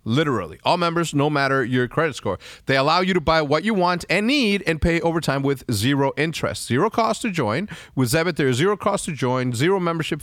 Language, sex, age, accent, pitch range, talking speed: English, male, 30-49, American, 120-165 Hz, 225 wpm